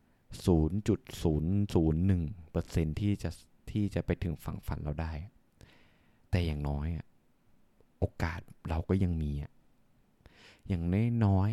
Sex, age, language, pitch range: male, 20-39, Thai, 85-115 Hz